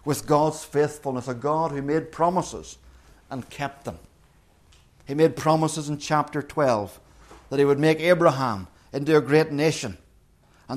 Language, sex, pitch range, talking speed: English, male, 145-200 Hz, 150 wpm